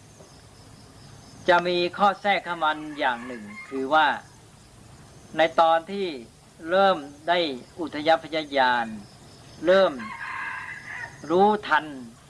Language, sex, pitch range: Thai, female, 130-165 Hz